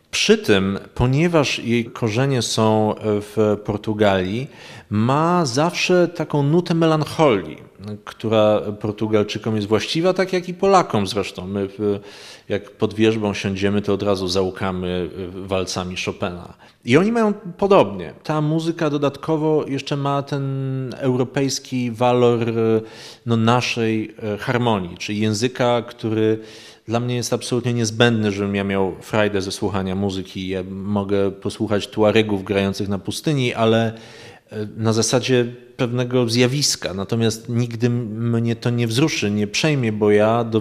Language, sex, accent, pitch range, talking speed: Polish, male, native, 105-130 Hz, 125 wpm